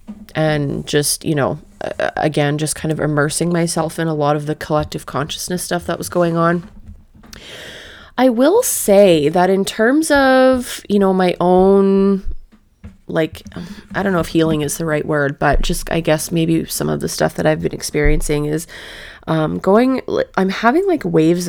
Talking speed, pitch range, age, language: 175 wpm, 155-195 Hz, 20-39, English